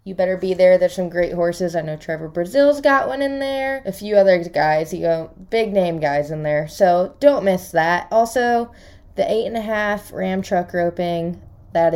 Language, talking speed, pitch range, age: English, 205 wpm, 175-235 Hz, 20-39